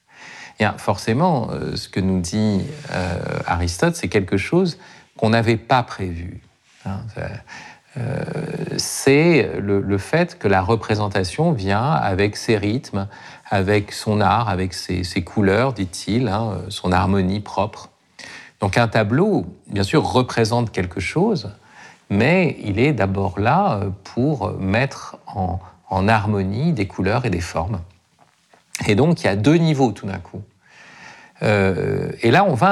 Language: French